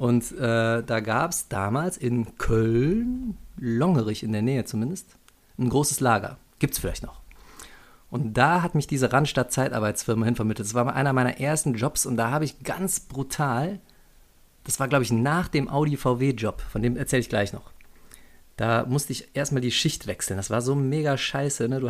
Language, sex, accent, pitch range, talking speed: German, male, German, 110-135 Hz, 180 wpm